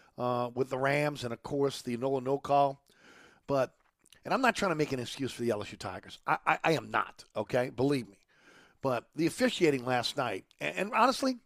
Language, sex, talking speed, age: English, male, 210 wpm, 50-69